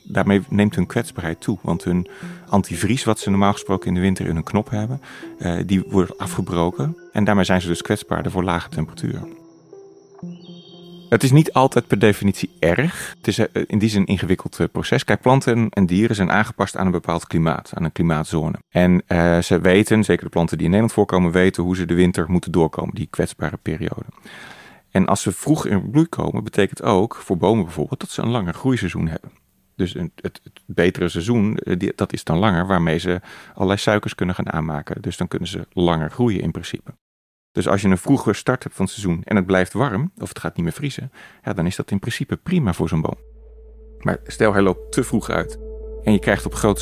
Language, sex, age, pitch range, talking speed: Dutch, male, 30-49, 85-120 Hz, 210 wpm